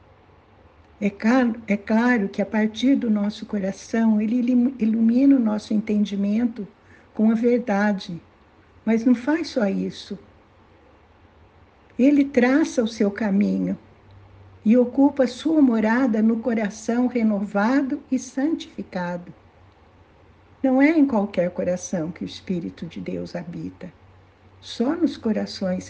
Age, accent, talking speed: 60-79, Brazilian, 120 wpm